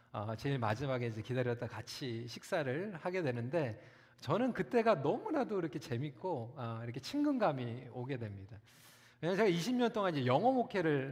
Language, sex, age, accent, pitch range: Korean, male, 40-59, native, 120-190 Hz